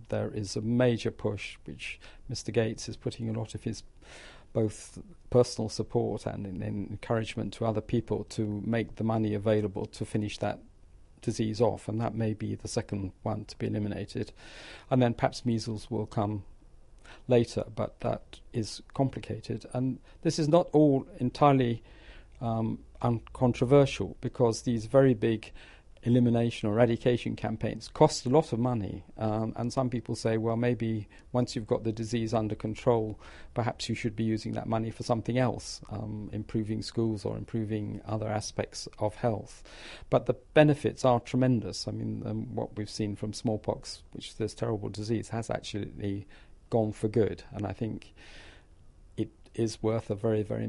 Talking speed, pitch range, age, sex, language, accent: 165 wpm, 105-120 Hz, 50-69, male, English, British